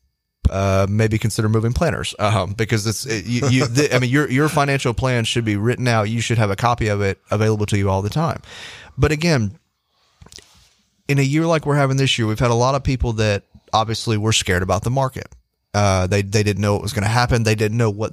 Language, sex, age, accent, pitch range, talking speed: English, male, 30-49, American, 105-125 Hz, 240 wpm